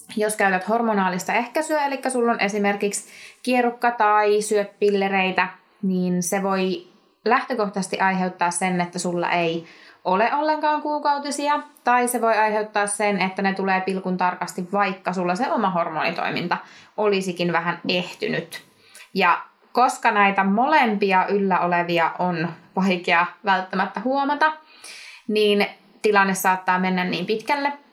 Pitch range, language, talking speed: 185-220 Hz, Finnish, 120 wpm